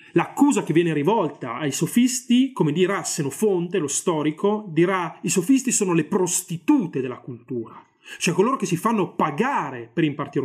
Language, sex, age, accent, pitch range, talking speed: Italian, male, 30-49, native, 165-230 Hz, 155 wpm